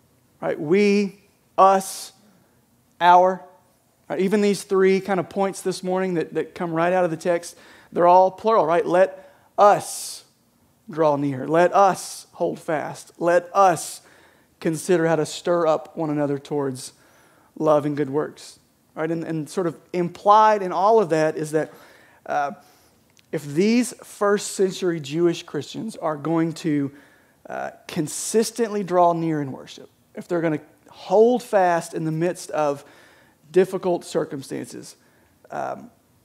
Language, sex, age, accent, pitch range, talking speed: English, male, 30-49, American, 150-185 Hz, 145 wpm